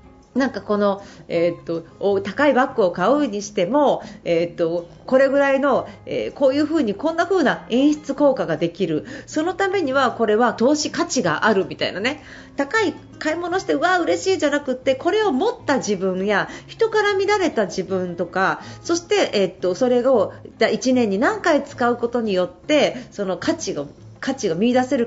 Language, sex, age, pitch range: Japanese, female, 40-59, 195-305 Hz